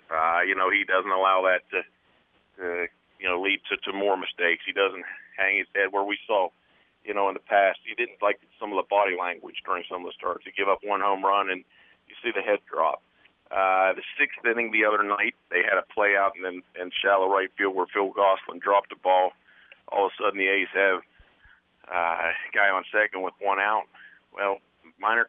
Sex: male